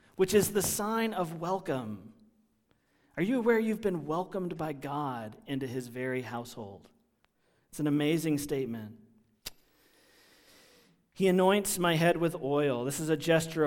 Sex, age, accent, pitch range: male, 40-59, American, 140-195 Hz